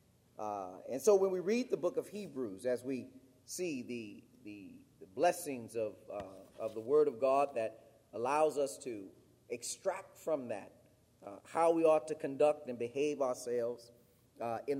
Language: English